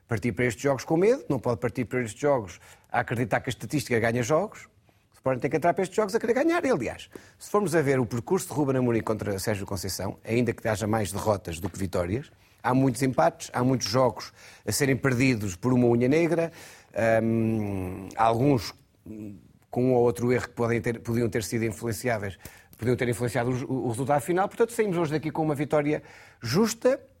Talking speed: 200 wpm